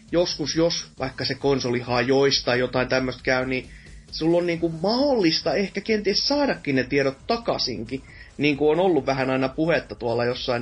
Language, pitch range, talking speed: Finnish, 130-165 Hz, 165 wpm